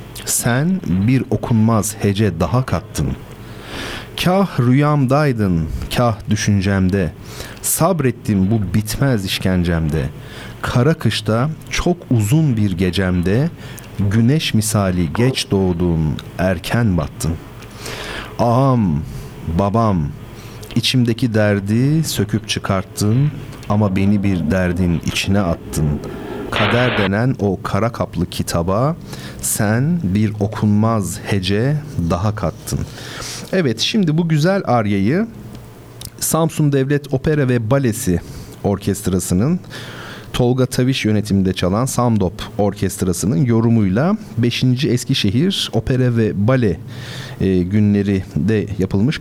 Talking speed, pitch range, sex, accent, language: 95 wpm, 100-130 Hz, male, native, Turkish